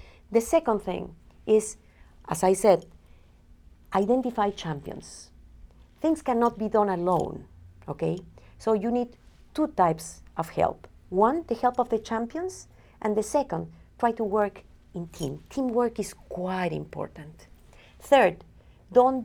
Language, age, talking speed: English, 40-59, 130 wpm